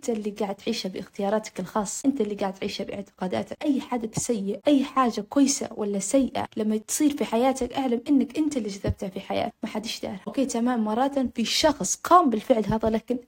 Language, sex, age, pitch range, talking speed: Arabic, female, 20-39, 220-275 Hz, 195 wpm